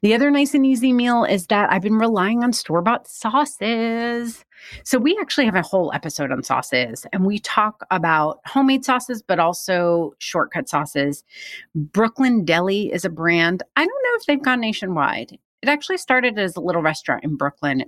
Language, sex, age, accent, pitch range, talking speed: English, female, 30-49, American, 155-225 Hz, 185 wpm